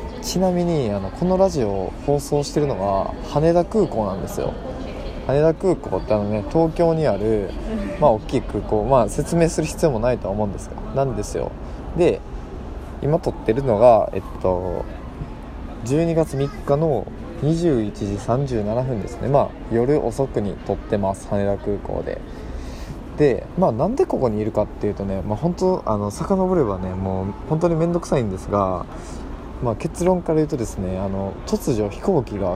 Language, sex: Japanese, male